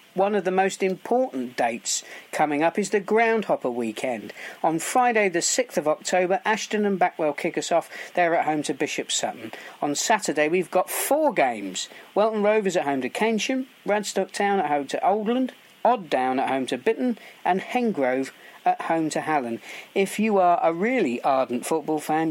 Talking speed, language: 185 wpm, English